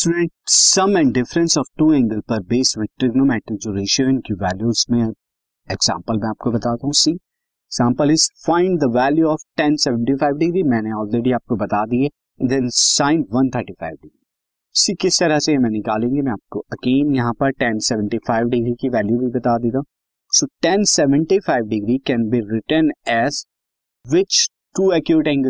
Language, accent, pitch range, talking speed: Hindi, native, 115-150 Hz, 50 wpm